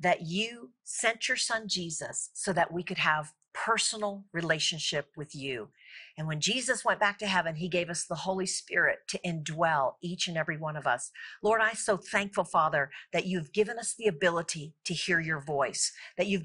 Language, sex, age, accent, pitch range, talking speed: English, female, 50-69, American, 170-205 Hz, 195 wpm